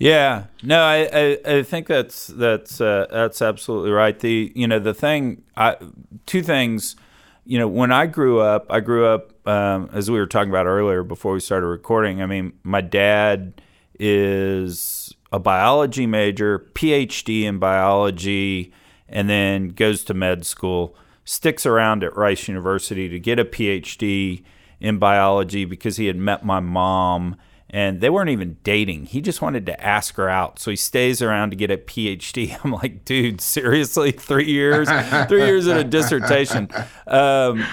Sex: male